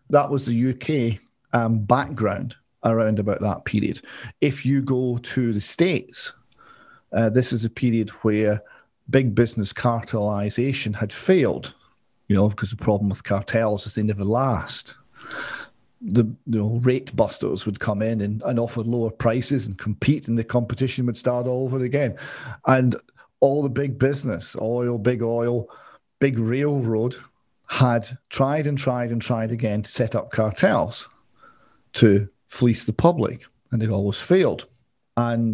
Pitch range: 110-125 Hz